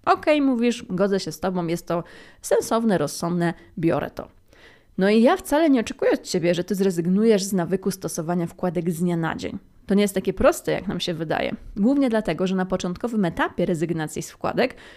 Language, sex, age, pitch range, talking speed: Polish, female, 20-39, 180-235 Hz, 195 wpm